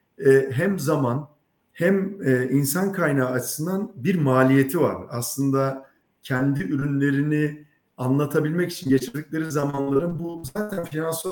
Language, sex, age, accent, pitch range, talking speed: Turkish, male, 50-69, native, 135-170 Hz, 110 wpm